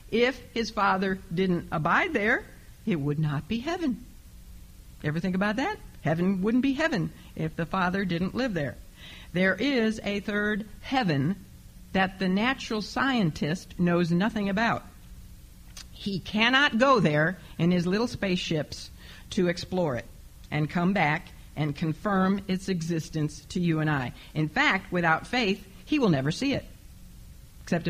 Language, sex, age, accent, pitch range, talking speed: English, female, 50-69, American, 160-210 Hz, 150 wpm